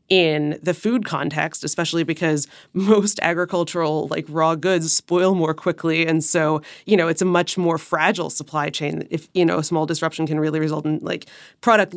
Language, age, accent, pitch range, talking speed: English, 20-39, American, 165-200 Hz, 185 wpm